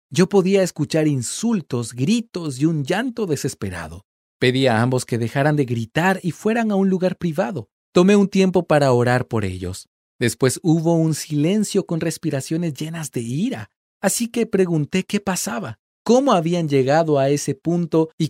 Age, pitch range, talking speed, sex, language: 40-59, 120-190 Hz, 165 wpm, male, Spanish